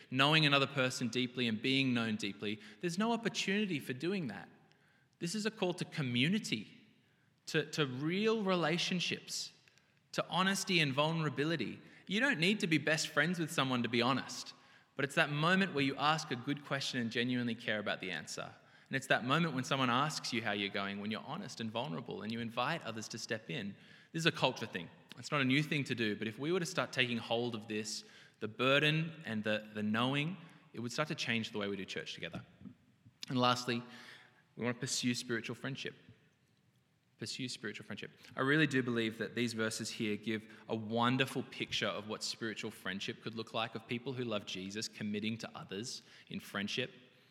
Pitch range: 115-155 Hz